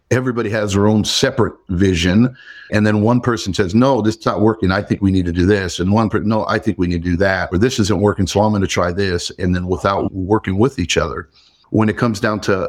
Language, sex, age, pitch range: English, male, 50-69, 95-115 Hz